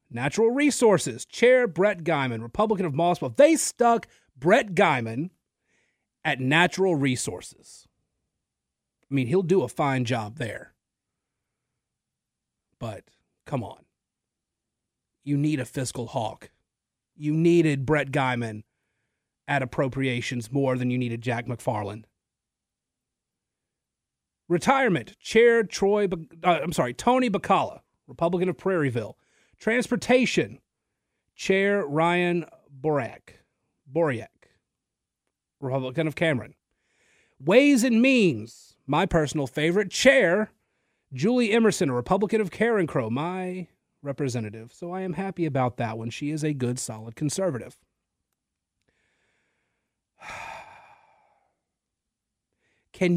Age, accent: 30-49, American